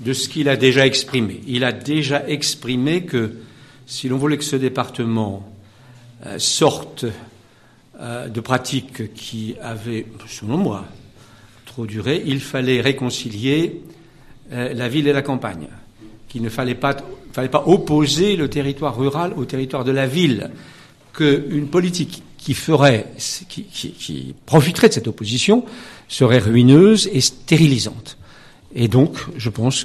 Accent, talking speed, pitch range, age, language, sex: French, 135 wpm, 115-145 Hz, 60-79, French, male